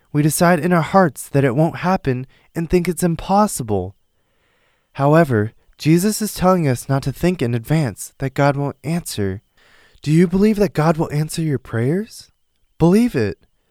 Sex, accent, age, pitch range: male, American, 20-39, 130-175 Hz